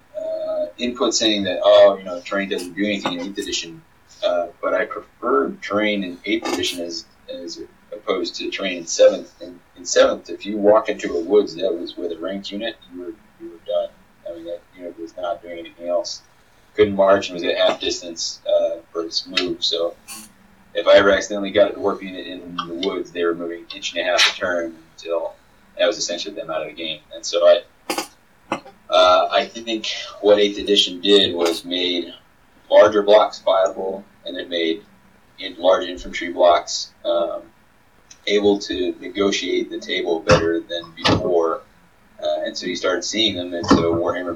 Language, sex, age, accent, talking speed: English, male, 30-49, American, 190 wpm